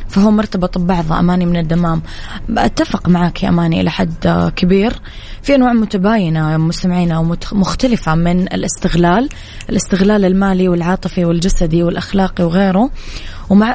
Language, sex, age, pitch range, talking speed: Arabic, female, 20-39, 170-195 Hz, 115 wpm